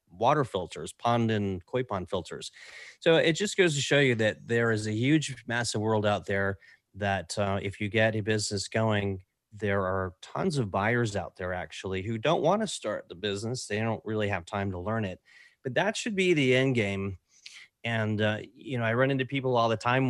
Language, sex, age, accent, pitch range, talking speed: English, male, 30-49, American, 100-130 Hz, 215 wpm